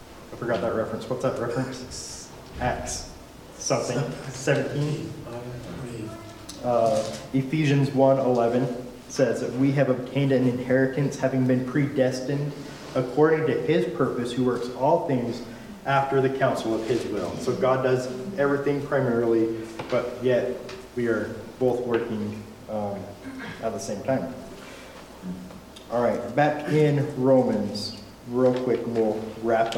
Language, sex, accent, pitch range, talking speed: English, male, American, 115-135 Hz, 125 wpm